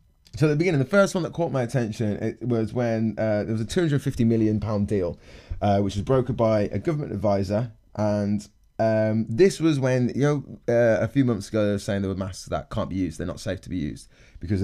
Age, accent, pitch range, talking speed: 20-39, British, 95-120 Hz, 240 wpm